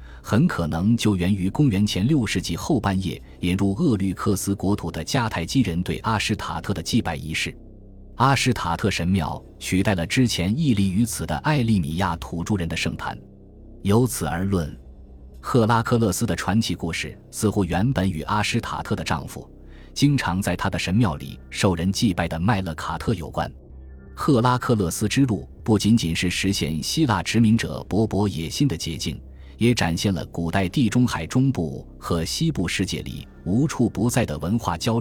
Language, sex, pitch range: Chinese, male, 80-110 Hz